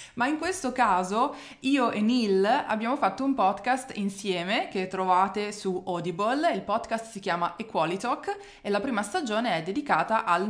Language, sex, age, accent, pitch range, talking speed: Italian, female, 20-39, native, 175-230 Hz, 165 wpm